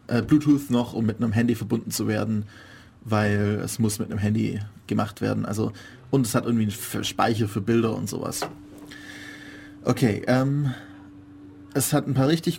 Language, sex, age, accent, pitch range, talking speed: German, male, 30-49, German, 110-125 Hz, 165 wpm